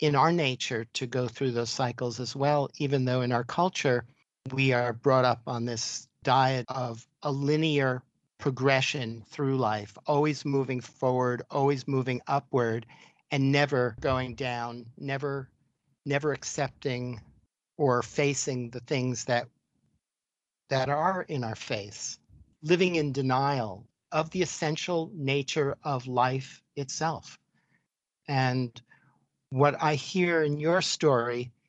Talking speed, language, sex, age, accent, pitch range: 130 wpm, English, male, 50-69, American, 125-150 Hz